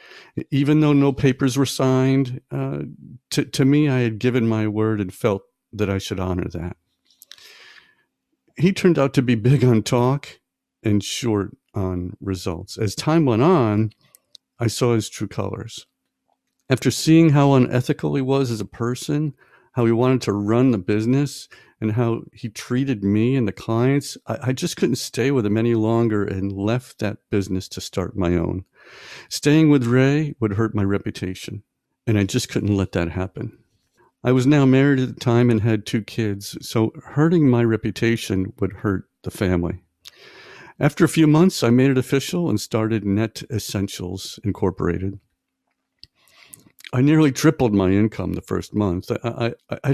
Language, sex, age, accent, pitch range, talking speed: English, male, 50-69, American, 100-130 Hz, 170 wpm